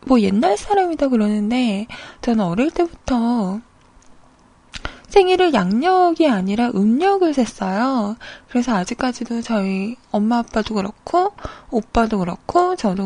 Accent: native